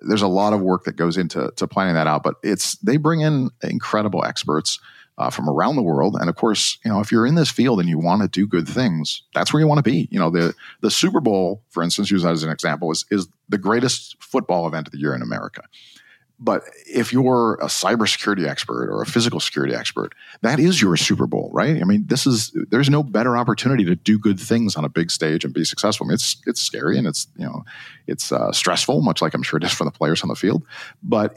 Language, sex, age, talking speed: English, male, 50-69, 255 wpm